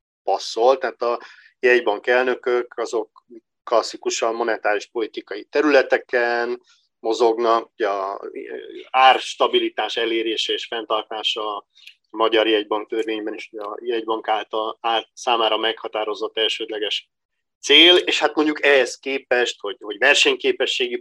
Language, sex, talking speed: Hungarian, male, 105 wpm